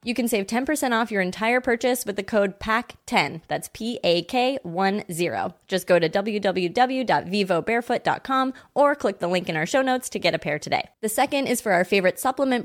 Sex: female